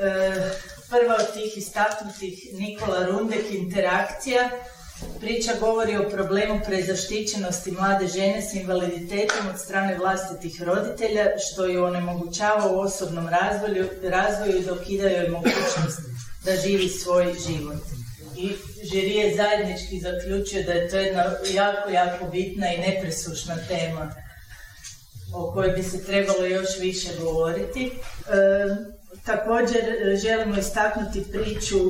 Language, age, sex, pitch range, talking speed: Croatian, 40-59, female, 185-210 Hz, 115 wpm